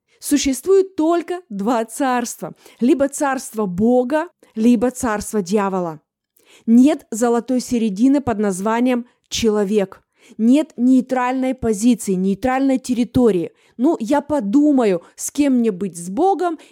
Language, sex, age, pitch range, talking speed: Russian, female, 20-39, 230-295 Hz, 110 wpm